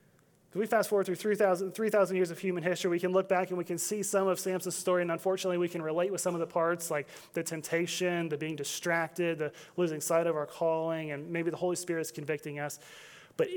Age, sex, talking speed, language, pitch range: 30-49, male, 230 wpm, English, 145-180 Hz